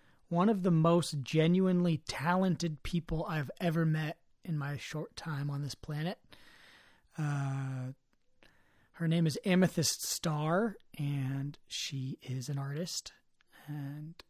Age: 30-49